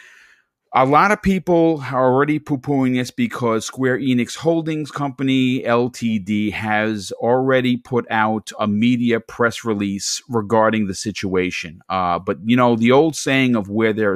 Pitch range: 105-135 Hz